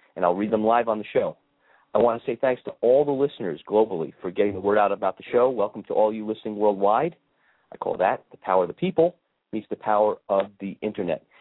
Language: English